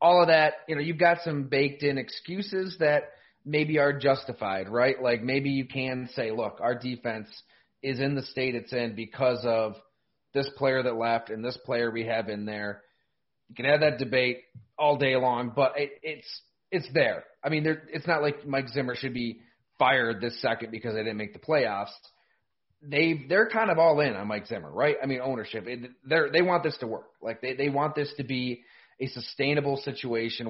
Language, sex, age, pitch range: English, male, 30-49, 120-155 Hz